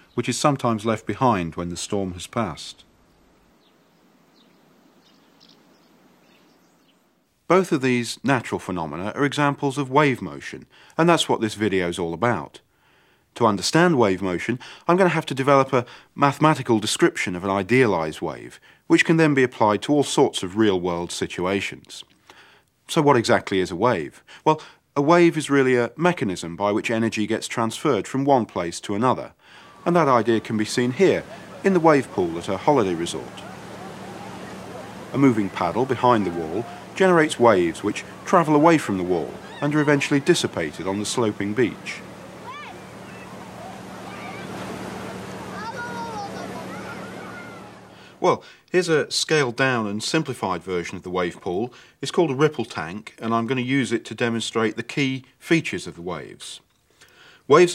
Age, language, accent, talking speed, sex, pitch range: 40-59, English, British, 155 wpm, male, 105-145 Hz